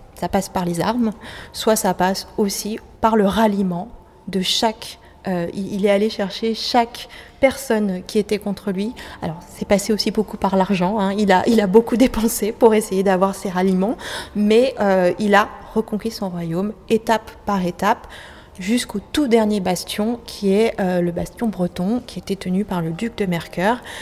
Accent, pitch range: French, 185-220 Hz